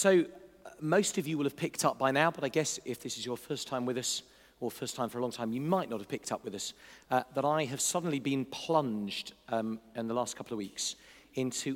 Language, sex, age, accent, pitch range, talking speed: English, male, 40-59, British, 115-155 Hz, 265 wpm